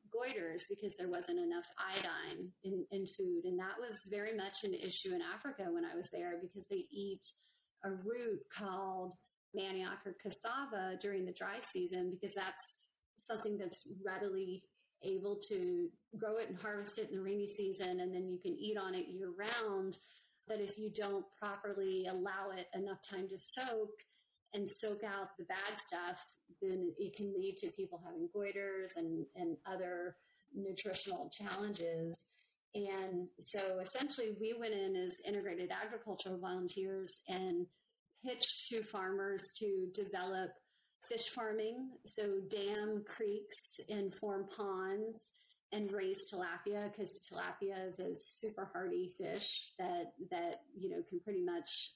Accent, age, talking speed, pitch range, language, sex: American, 30-49, 150 wpm, 190-240 Hz, English, female